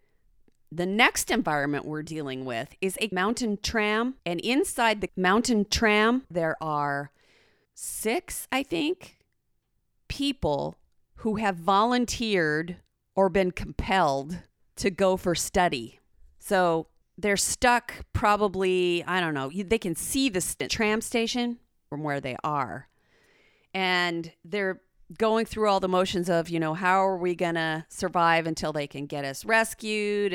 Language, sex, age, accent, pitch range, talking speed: English, female, 40-59, American, 160-210 Hz, 140 wpm